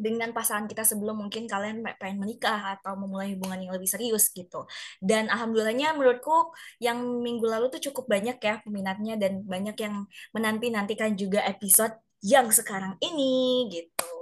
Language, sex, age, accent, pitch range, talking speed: Indonesian, female, 20-39, native, 210-255 Hz, 150 wpm